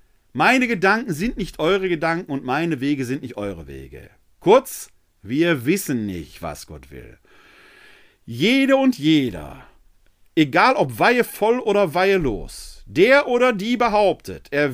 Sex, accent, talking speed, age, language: male, German, 140 wpm, 40-59, German